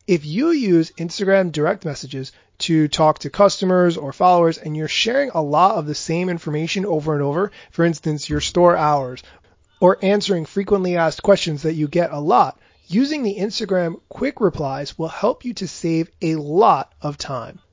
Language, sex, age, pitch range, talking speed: English, male, 30-49, 155-200 Hz, 180 wpm